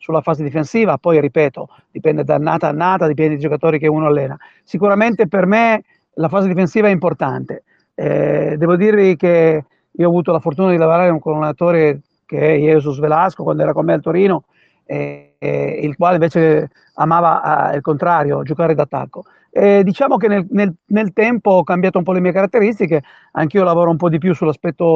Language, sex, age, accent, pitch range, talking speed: Italian, male, 40-59, native, 155-185 Hz, 190 wpm